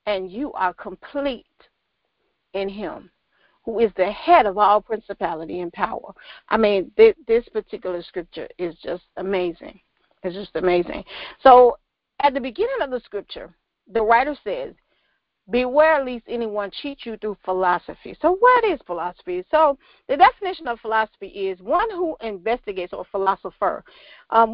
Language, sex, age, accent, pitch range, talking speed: English, female, 40-59, American, 195-290 Hz, 145 wpm